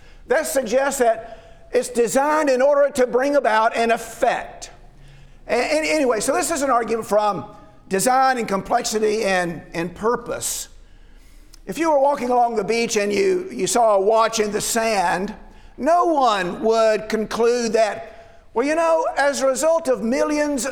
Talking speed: 155 wpm